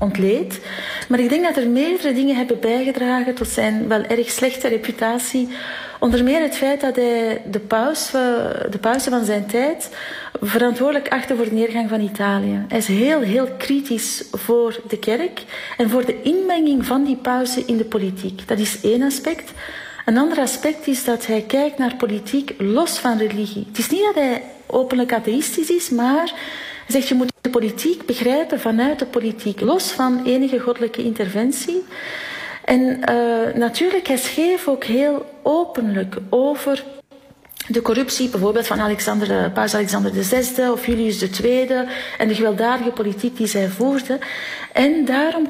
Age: 40-59